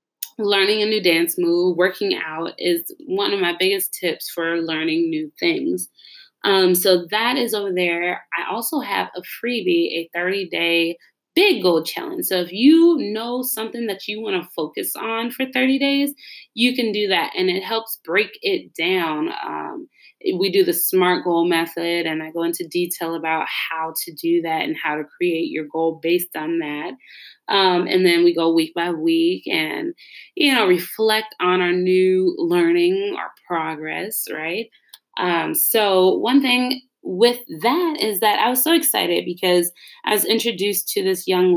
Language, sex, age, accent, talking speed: English, female, 20-39, American, 175 wpm